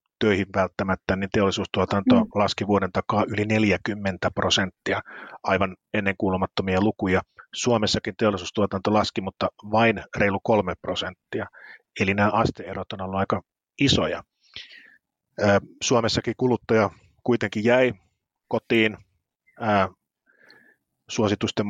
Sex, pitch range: male, 95-110 Hz